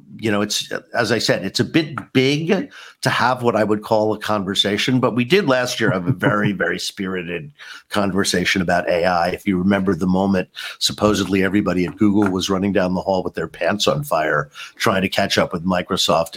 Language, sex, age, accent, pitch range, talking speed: English, male, 50-69, American, 100-130 Hz, 205 wpm